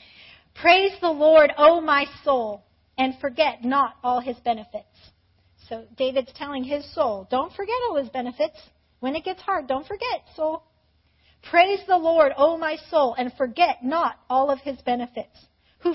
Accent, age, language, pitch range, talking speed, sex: American, 40-59, English, 245-315 Hz, 160 wpm, female